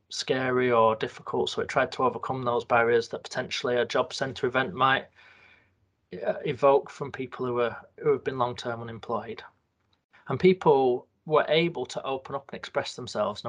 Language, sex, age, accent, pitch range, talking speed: English, male, 20-39, British, 120-155 Hz, 175 wpm